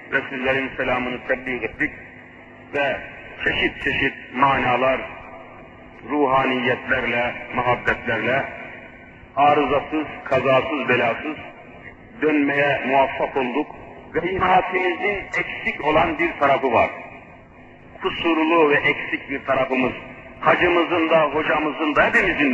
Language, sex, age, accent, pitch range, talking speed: Turkish, male, 50-69, native, 135-205 Hz, 90 wpm